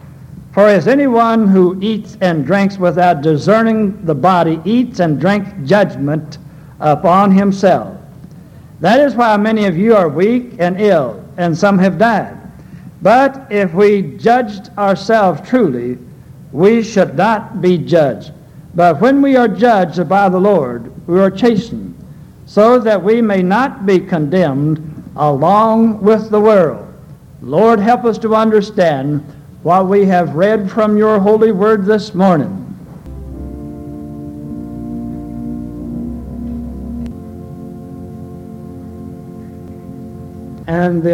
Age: 60-79